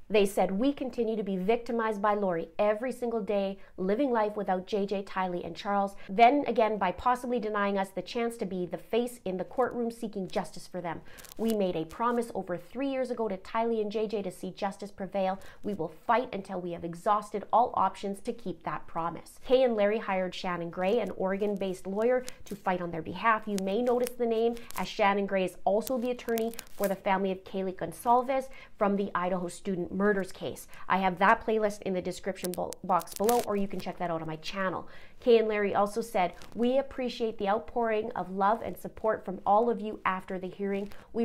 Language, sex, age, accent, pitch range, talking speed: English, female, 30-49, American, 185-230 Hz, 210 wpm